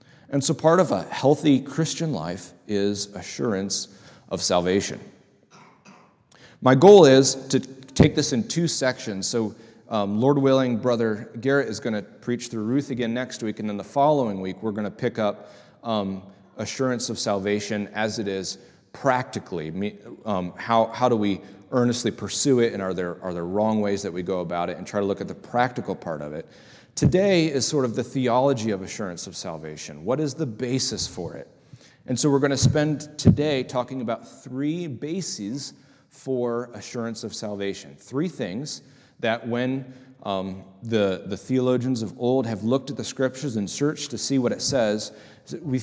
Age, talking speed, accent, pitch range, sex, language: 30-49, 180 wpm, American, 105-135 Hz, male, English